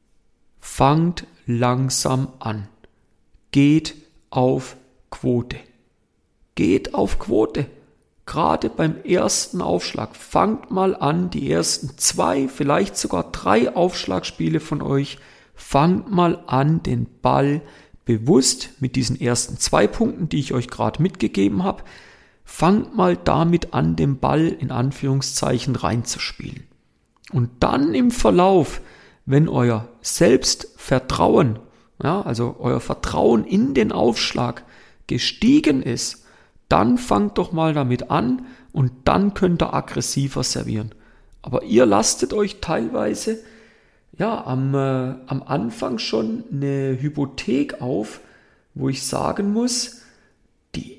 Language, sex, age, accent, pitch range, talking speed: German, male, 40-59, German, 125-175 Hz, 115 wpm